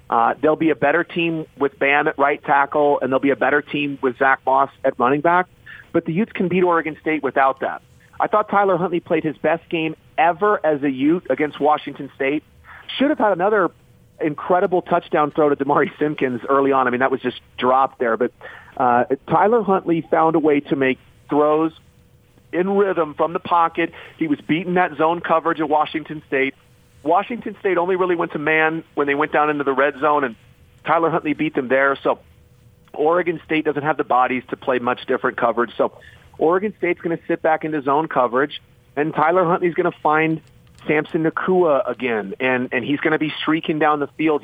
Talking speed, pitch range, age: 205 wpm, 140-170 Hz, 40-59